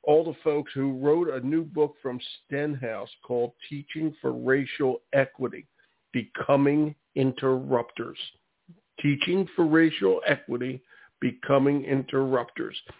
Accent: American